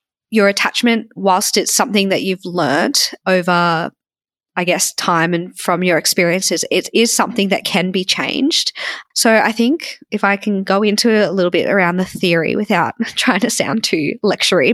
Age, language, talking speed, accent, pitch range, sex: 20-39, English, 175 wpm, Australian, 175-215 Hz, female